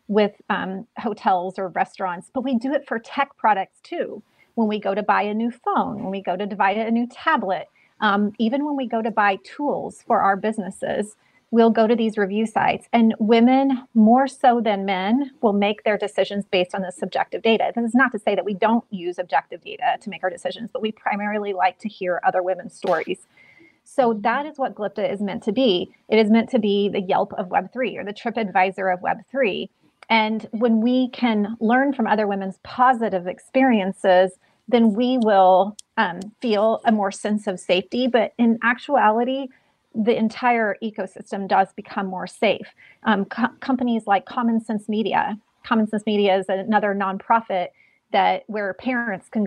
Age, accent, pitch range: 30-49, American, 195-240 Hz